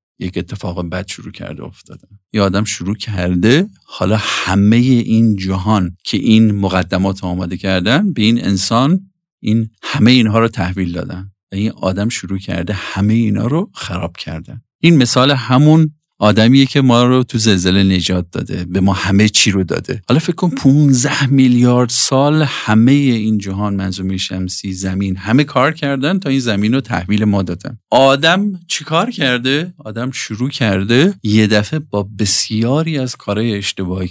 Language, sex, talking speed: Persian, male, 160 wpm